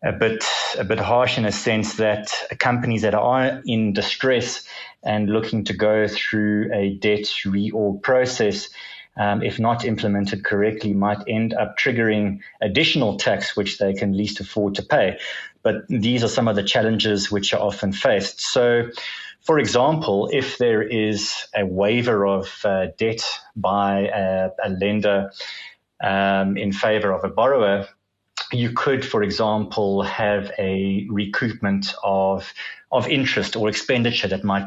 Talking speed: 150 wpm